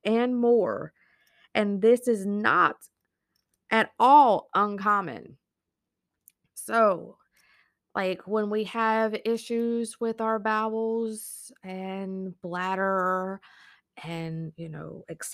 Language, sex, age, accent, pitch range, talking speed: English, female, 20-39, American, 180-220 Hz, 95 wpm